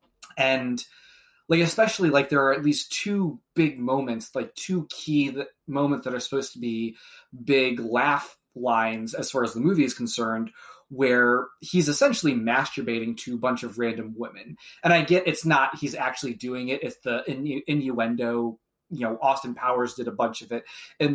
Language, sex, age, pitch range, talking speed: English, male, 20-39, 120-145 Hz, 175 wpm